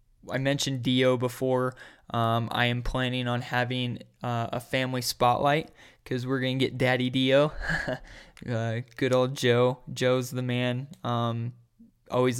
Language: English